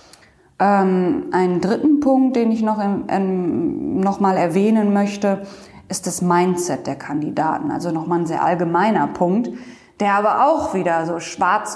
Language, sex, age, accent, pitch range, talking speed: German, female, 20-39, German, 180-230 Hz, 155 wpm